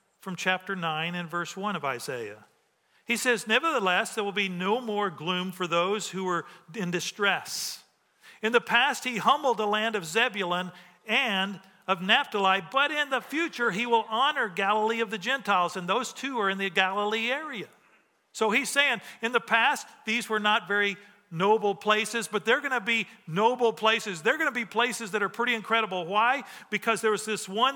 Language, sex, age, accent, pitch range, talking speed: English, male, 50-69, American, 180-230 Hz, 190 wpm